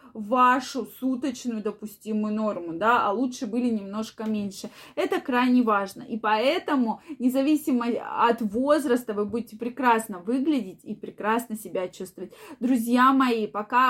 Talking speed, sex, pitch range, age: 125 wpm, female, 215-270 Hz, 20-39